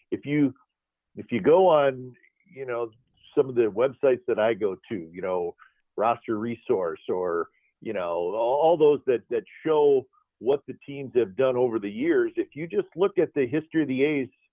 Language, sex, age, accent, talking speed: English, male, 50-69, American, 190 wpm